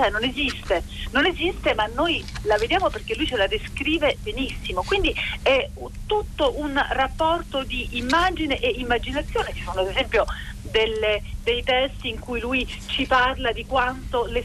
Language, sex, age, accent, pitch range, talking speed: Italian, female, 40-59, native, 220-320 Hz, 155 wpm